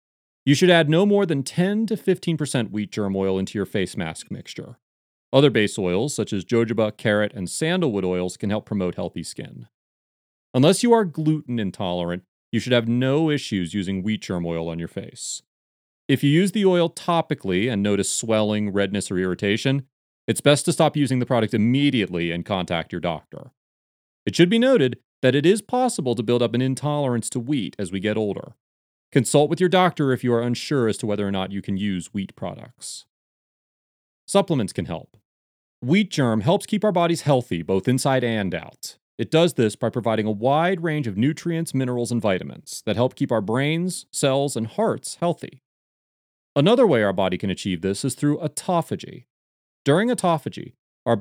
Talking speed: 185 wpm